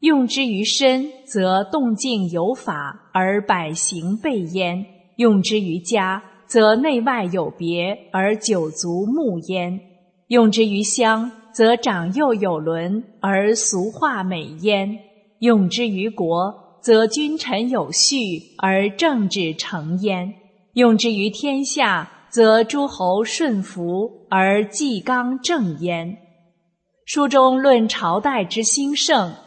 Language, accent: English, Chinese